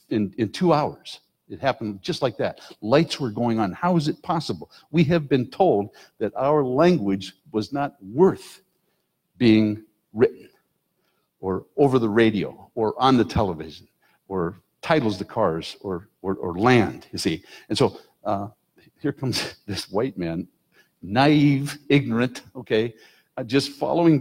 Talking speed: 150 wpm